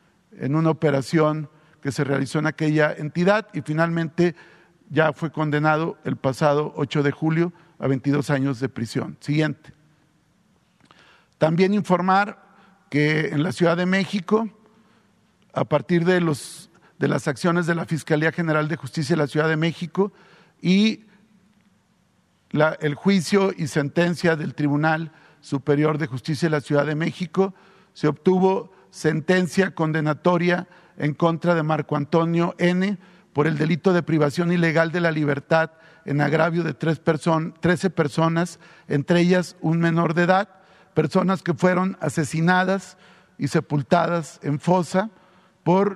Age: 50-69